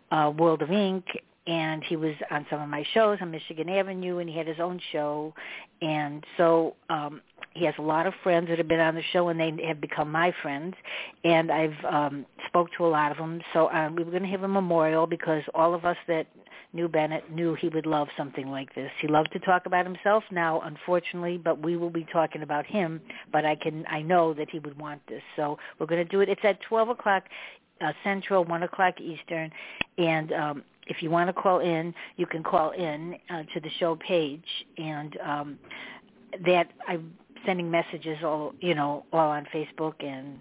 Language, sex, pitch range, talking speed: English, female, 155-180 Hz, 210 wpm